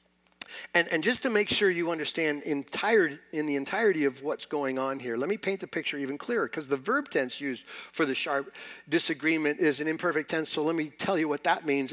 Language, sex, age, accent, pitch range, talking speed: English, male, 50-69, American, 125-190 Hz, 225 wpm